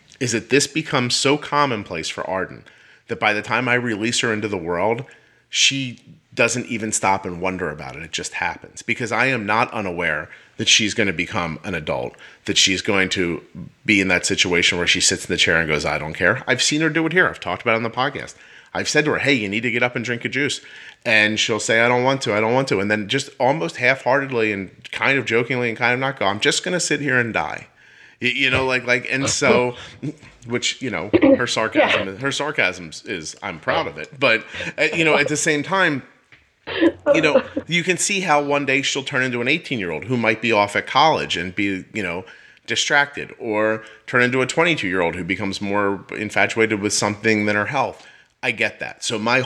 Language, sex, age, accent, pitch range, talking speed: English, male, 30-49, American, 105-140 Hz, 235 wpm